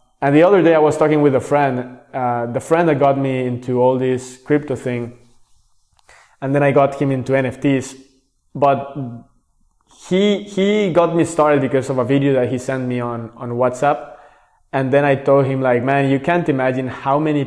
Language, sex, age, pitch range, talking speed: English, male, 20-39, 125-145 Hz, 195 wpm